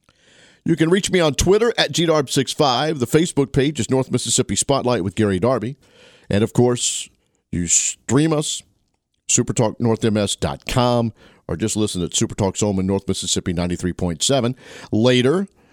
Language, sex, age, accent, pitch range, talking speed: English, male, 50-69, American, 95-135 Hz, 135 wpm